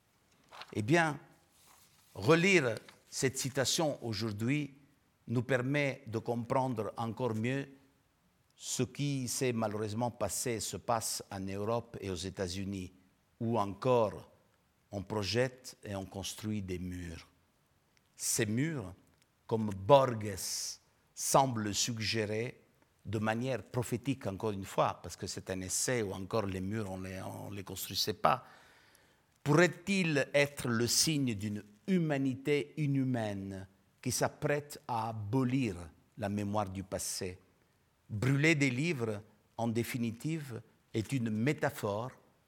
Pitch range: 100-135 Hz